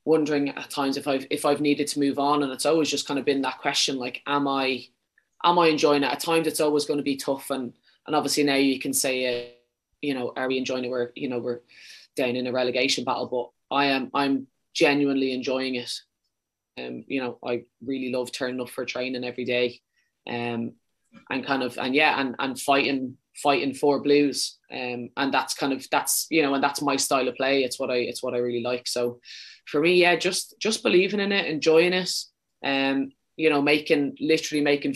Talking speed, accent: 220 wpm, Irish